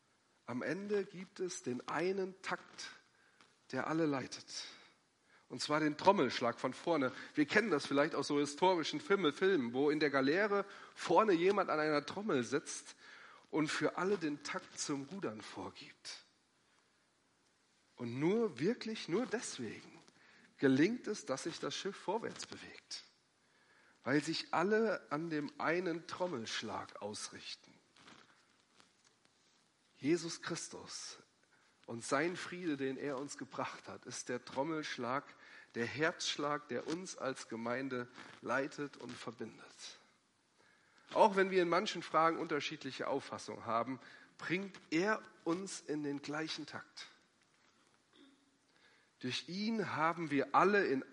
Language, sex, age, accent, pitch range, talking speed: German, male, 40-59, German, 145-190 Hz, 125 wpm